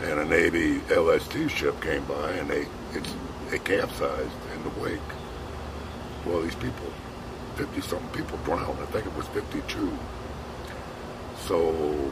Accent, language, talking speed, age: American, English, 130 wpm, 60-79